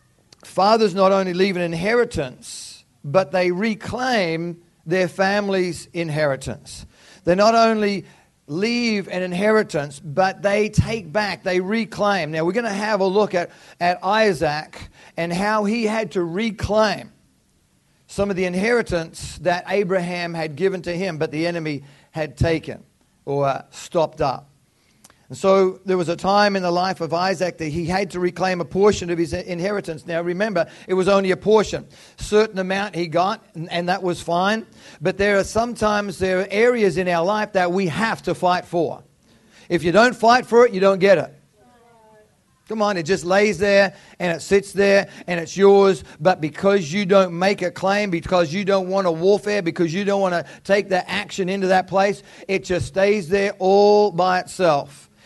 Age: 40-59